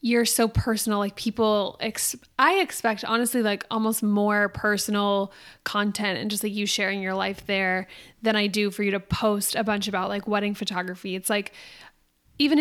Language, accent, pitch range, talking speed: English, American, 200-225 Hz, 175 wpm